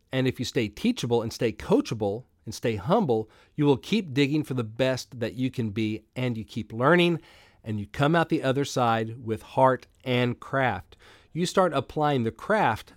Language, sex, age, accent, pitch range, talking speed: English, male, 40-59, American, 115-150 Hz, 195 wpm